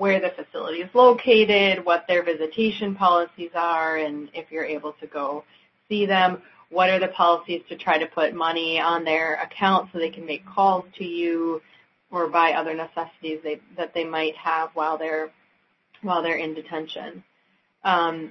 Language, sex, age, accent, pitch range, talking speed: English, female, 30-49, American, 160-185 Hz, 175 wpm